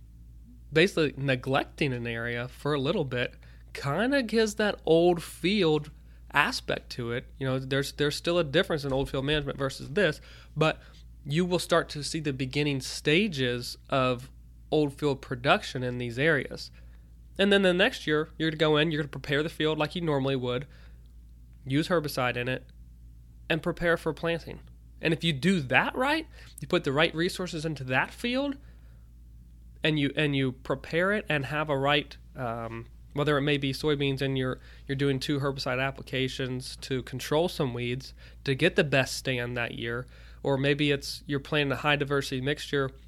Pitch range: 125-155 Hz